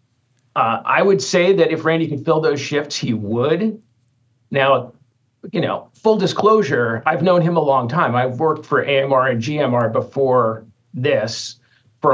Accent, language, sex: American, English, male